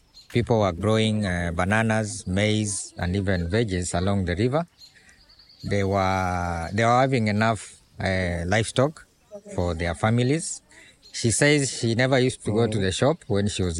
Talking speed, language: 155 wpm, English